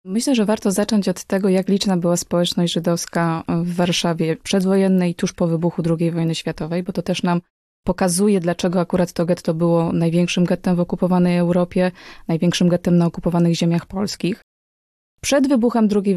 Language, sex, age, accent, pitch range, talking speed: Polish, female, 20-39, native, 170-195 Hz, 165 wpm